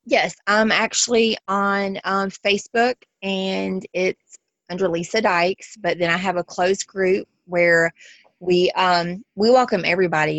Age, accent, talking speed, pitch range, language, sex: 20-39, American, 140 wpm, 155-180 Hz, English, female